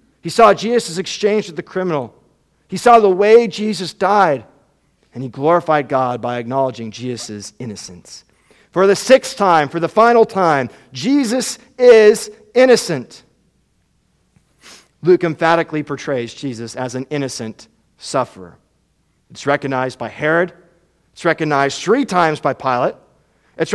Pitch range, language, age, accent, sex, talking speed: 125-175 Hz, English, 50-69, American, male, 130 wpm